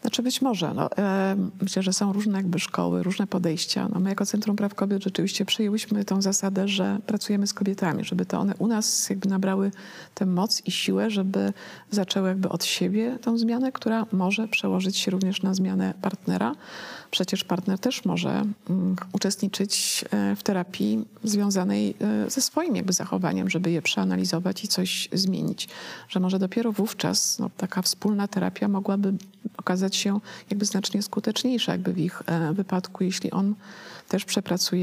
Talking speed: 160 wpm